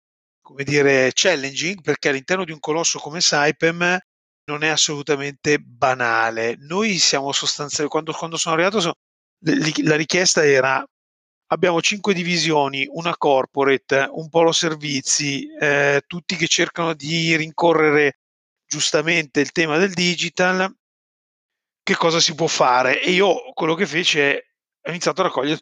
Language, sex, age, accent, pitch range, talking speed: Italian, male, 30-49, native, 140-180 Hz, 135 wpm